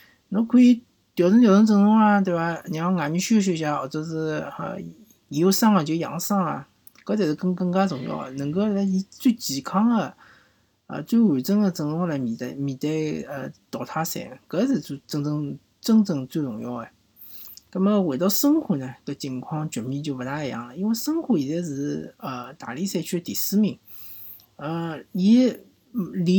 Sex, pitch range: male, 145-205 Hz